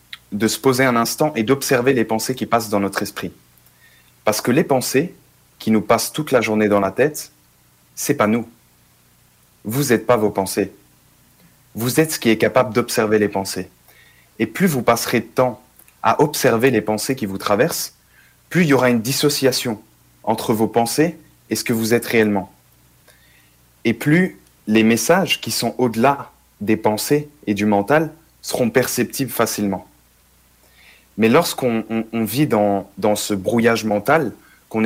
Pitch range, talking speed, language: 100-125 Hz, 170 wpm, French